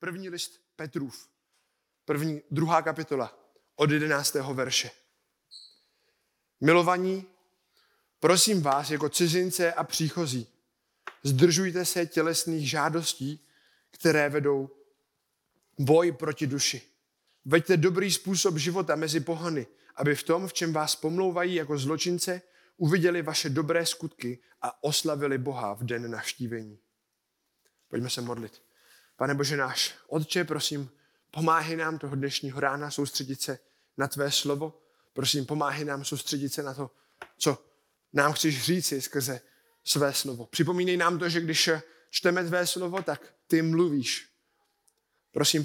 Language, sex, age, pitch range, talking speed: Czech, male, 20-39, 140-170 Hz, 125 wpm